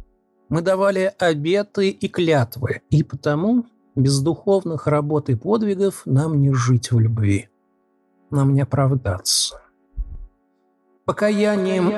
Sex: male